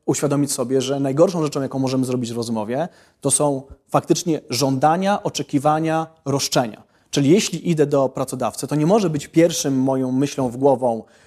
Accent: native